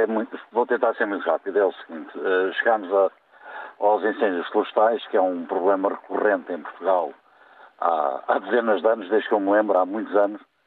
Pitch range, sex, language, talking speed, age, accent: 95-115 Hz, male, Portuguese, 185 wpm, 50-69, Portuguese